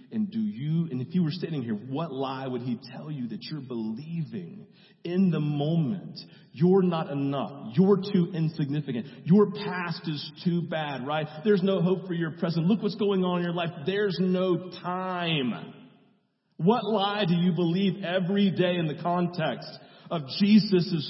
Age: 40-59